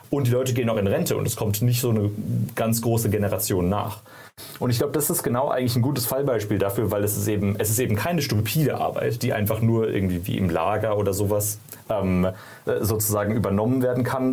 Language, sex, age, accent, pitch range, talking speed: German, male, 30-49, German, 105-125 Hz, 220 wpm